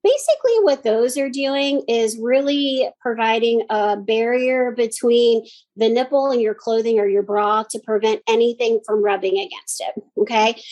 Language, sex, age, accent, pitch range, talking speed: English, female, 30-49, American, 210-245 Hz, 150 wpm